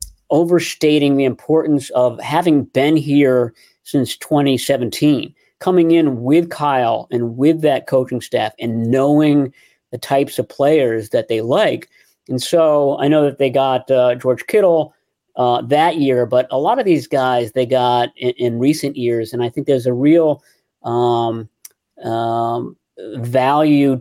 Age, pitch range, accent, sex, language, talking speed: 40-59, 125-150 Hz, American, male, English, 150 wpm